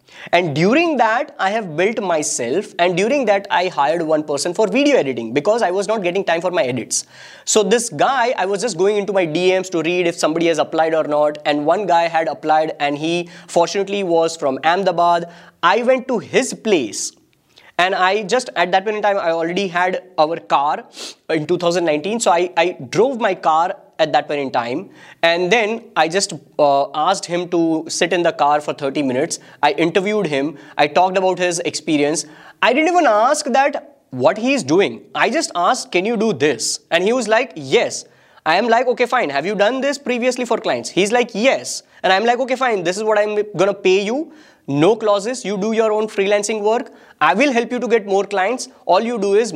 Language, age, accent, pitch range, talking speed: English, 20-39, Indian, 160-220 Hz, 215 wpm